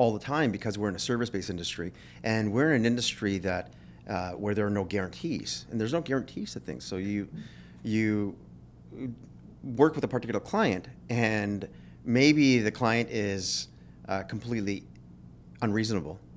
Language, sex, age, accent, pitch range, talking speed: English, male, 30-49, American, 80-115 Hz, 160 wpm